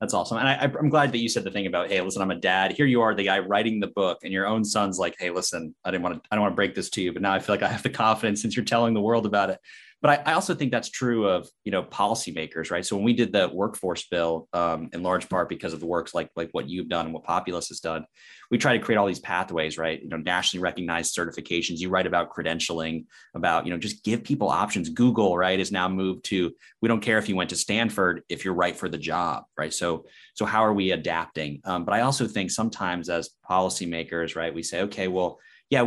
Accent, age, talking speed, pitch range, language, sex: American, 30-49, 270 wpm, 85-115 Hz, English, male